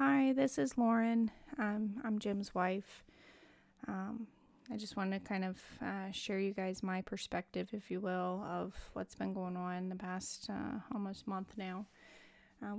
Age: 20-39